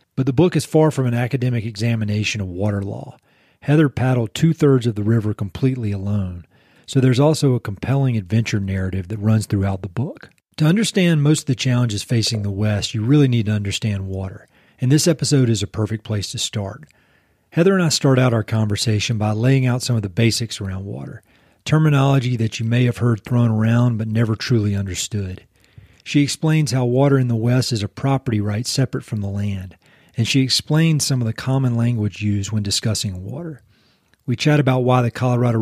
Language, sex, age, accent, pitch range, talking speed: English, male, 40-59, American, 105-130 Hz, 195 wpm